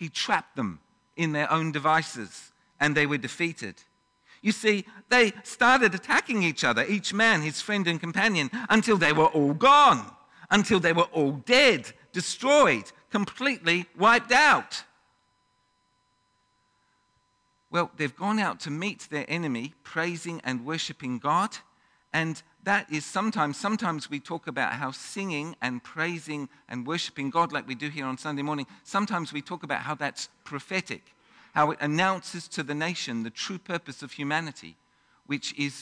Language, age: English, 50-69